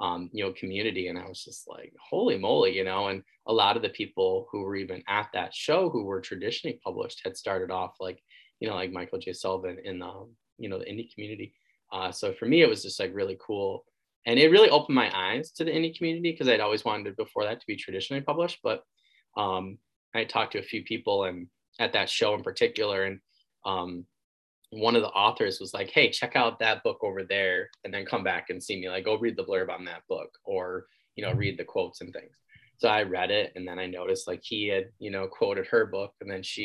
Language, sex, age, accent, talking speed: English, male, 10-29, American, 240 wpm